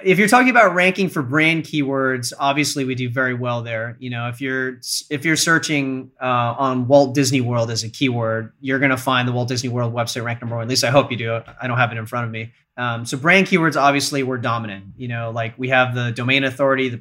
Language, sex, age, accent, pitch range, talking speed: English, male, 30-49, American, 120-140 Hz, 250 wpm